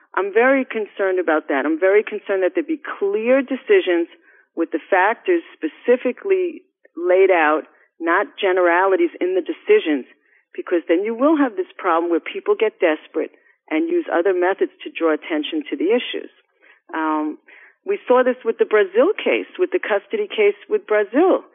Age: 50-69